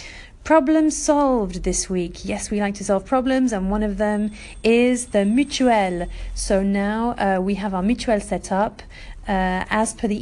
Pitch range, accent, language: 185-225 Hz, British, English